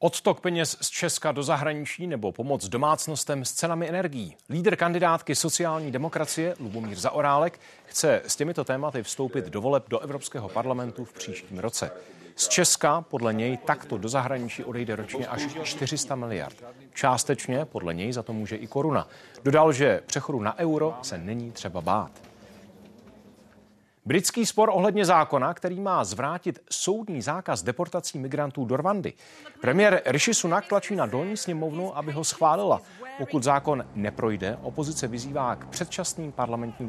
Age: 40-59